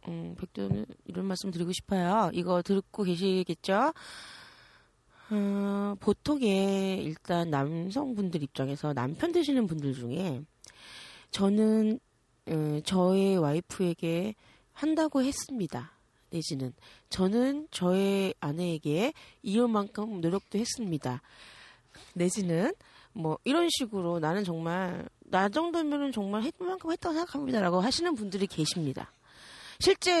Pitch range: 170-240 Hz